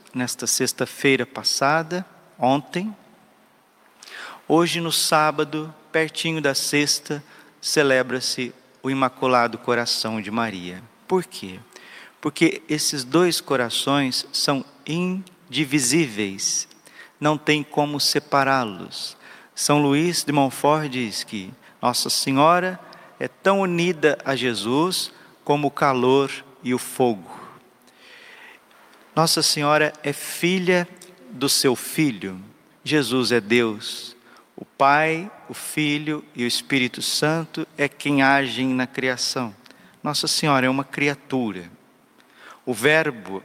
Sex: male